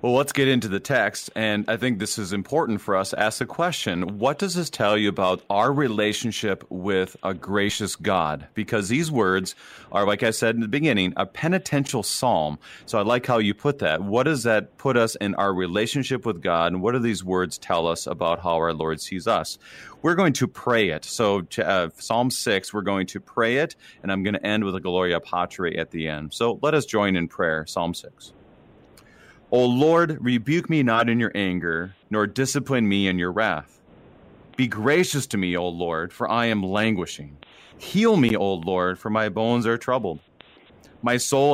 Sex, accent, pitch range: male, American, 95-125 Hz